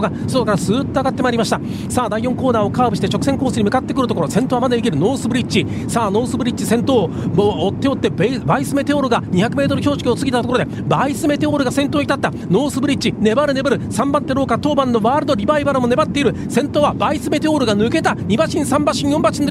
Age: 40-59